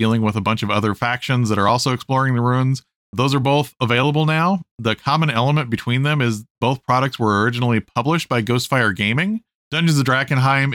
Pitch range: 110-135 Hz